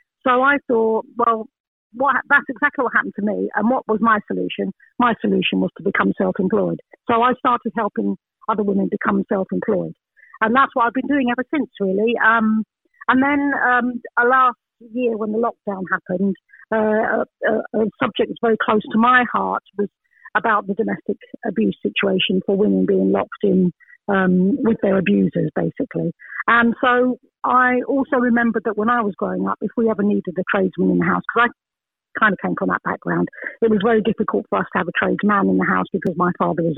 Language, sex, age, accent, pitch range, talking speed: English, female, 50-69, British, 200-240 Hz, 195 wpm